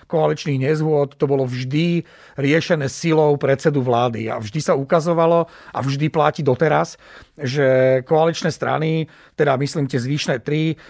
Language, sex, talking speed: Slovak, male, 140 wpm